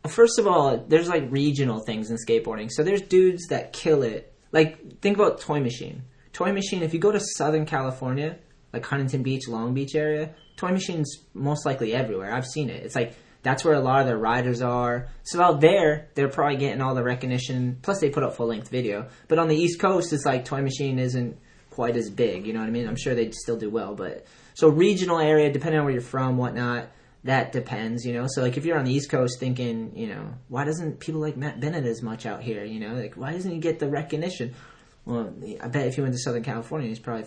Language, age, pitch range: English, 20-39, 120-150 Hz